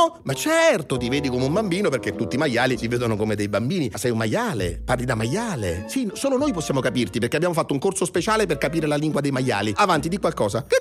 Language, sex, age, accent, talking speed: Italian, male, 40-59, native, 245 wpm